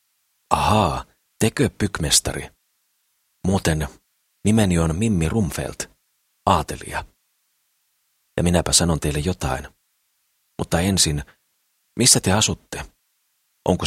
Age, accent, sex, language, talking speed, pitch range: 40-59, native, male, Finnish, 85 wpm, 75-100 Hz